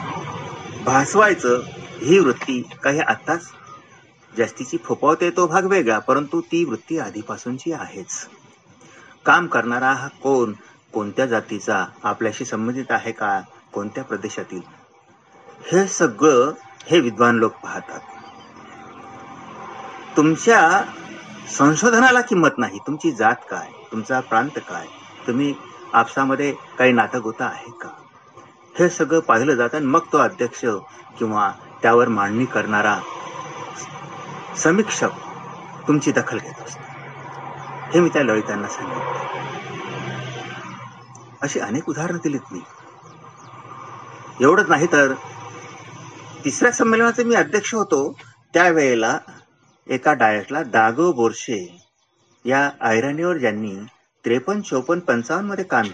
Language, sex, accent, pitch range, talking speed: Marathi, male, native, 120-175 Hz, 105 wpm